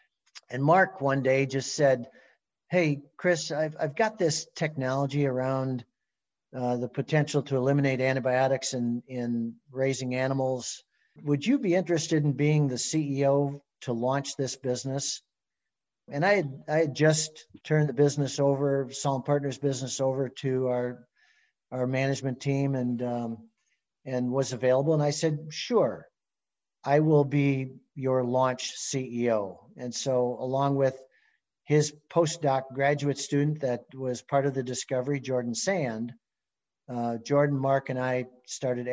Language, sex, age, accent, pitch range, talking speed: English, male, 50-69, American, 125-145 Hz, 140 wpm